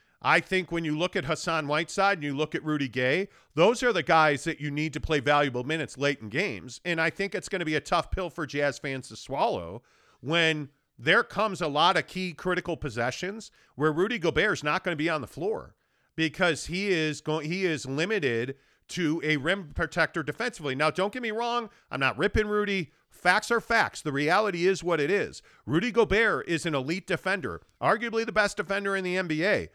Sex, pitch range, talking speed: male, 150-195 Hz, 210 wpm